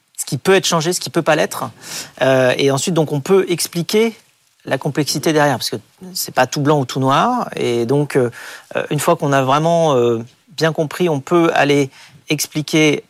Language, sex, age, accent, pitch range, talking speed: French, male, 40-59, French, 125-155 Hz, 200 wpm